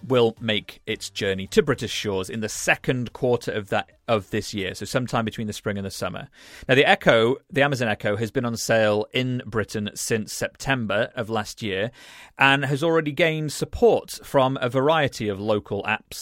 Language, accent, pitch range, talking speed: English, British, 110-145 Hz, 190 wpm